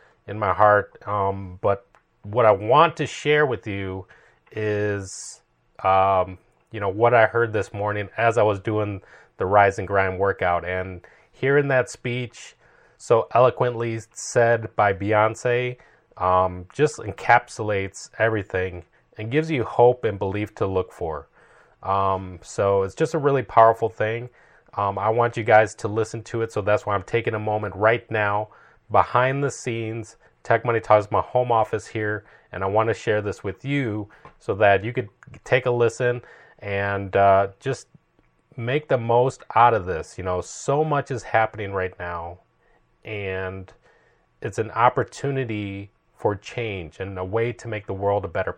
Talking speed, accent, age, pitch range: 170 wpm, American, 30-49, 100-120 Hz